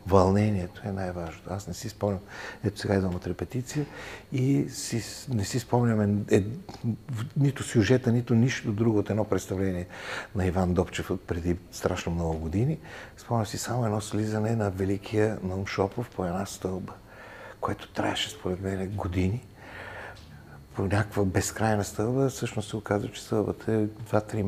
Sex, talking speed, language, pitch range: male, 150 wpm, Bulgarian, 90-115 Hz